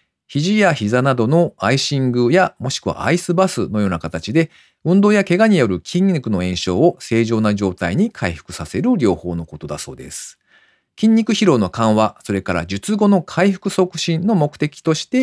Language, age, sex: Japanese, 40-59, male